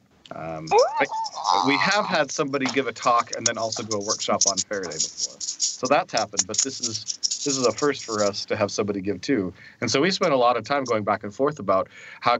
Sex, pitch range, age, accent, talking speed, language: male, 105-125 Hz, 30-49, American, 230 wpm, English